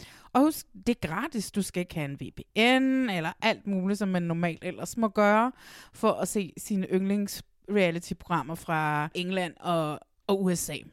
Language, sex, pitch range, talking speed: Danish, female, 175-225 Hz, 160 wpm